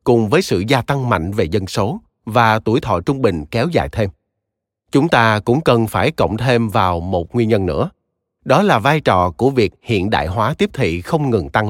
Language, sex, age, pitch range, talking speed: Vietnamese, male, 20-39, 100-130 Hz, 220 wpm